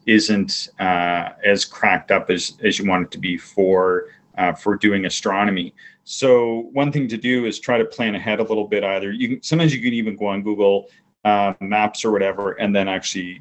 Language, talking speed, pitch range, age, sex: English, 205 wpm, 95-120 Hz, 40-59, male